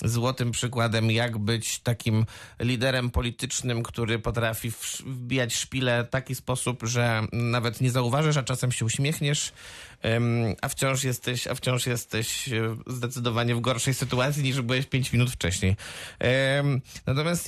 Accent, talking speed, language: native, 130 wpm, Polish